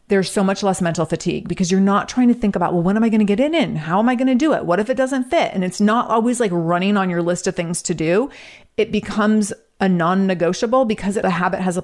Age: 30-49